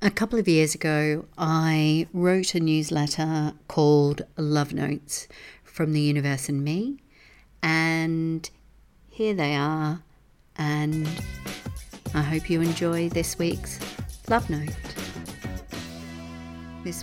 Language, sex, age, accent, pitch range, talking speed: English, female, 50-69, Australian, 145-165 Hz, 110 wpm